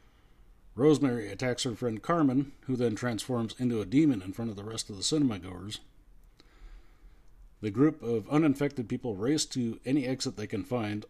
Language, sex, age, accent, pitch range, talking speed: English, male, 40-59, American, 105-135 Hz, 175 wpm